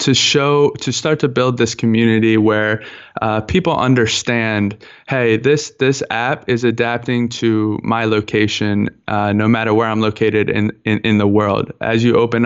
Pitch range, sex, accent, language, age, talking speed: 110-125 Hz, male, American, English, 20-39, 170 wpm